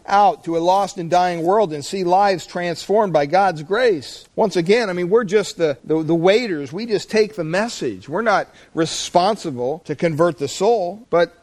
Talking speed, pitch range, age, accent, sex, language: 195 wpm, 155-200 Hz, 50-69, American, male, English